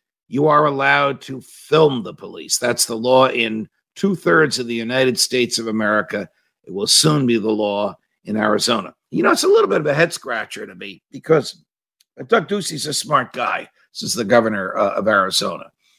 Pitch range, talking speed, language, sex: 120-150 Hz, 190 wpm, English, male